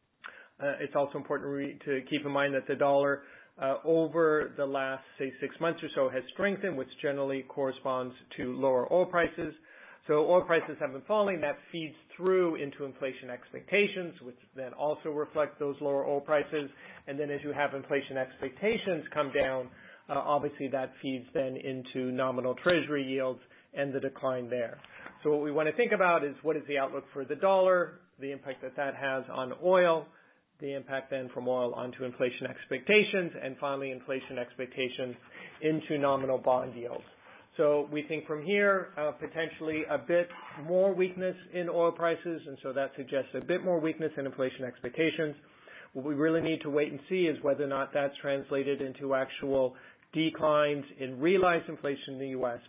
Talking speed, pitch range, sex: 180 wpm, 135-160 Hz, male